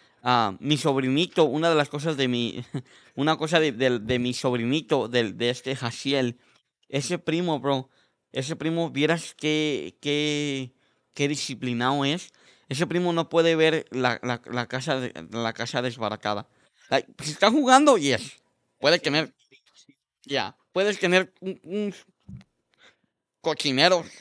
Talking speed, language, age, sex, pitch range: 140 wpm, Spanish, 20-39, male, 130-165 Hz